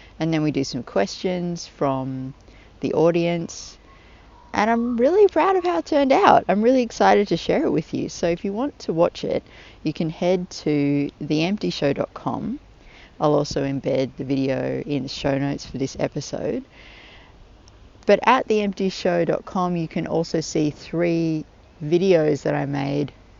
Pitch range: 140-185 Hz